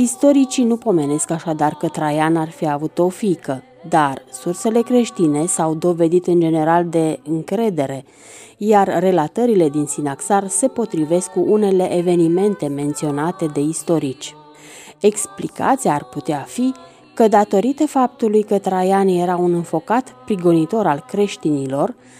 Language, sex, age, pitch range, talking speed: Romanian, female, 30-49, 155-215 Hz, 125 wpm